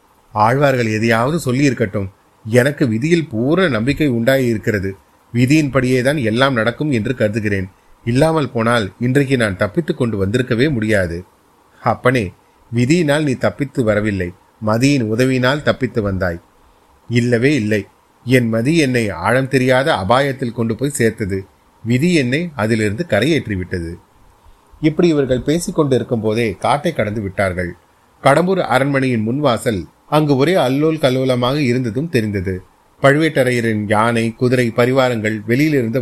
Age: 30-49